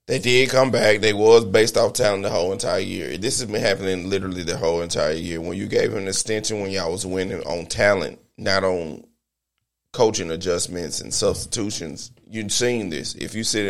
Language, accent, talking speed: English, American, 195 wpm